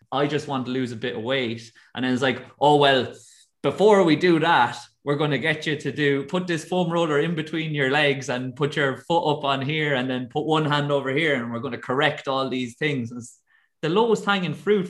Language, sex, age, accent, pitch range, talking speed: English, male, 20-39, Irish, 125-155 Hz, 245 wpm